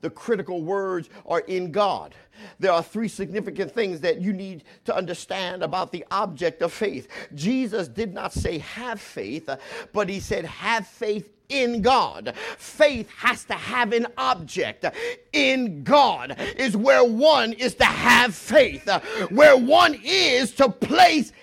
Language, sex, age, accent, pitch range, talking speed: English, male, 50-69, American, 210-345 Hz, 150 wpm